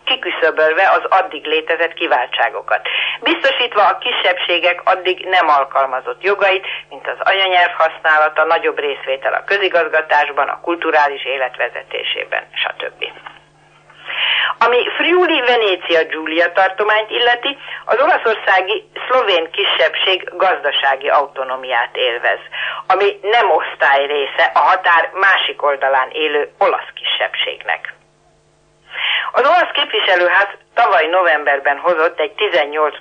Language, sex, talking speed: Hungarian, female, 100 wpm